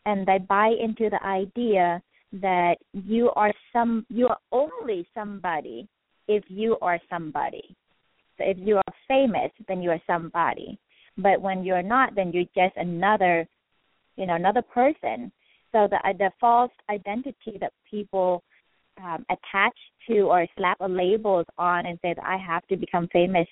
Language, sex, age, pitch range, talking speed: English, female, 20-39, 175-210 Hz, 160 wpm